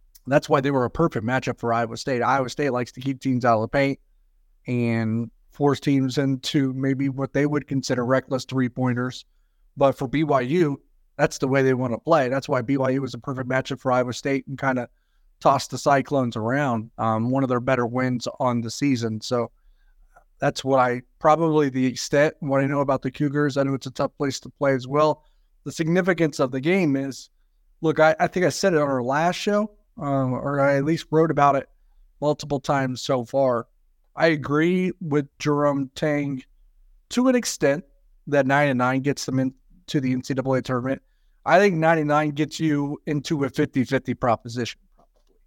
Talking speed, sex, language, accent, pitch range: 195 wpm, male, English, American, 130-150 Hz